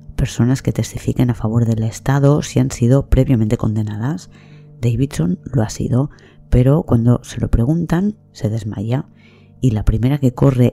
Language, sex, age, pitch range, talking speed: Spanish, female, 20-39, 110-130 Hz, 155 wpm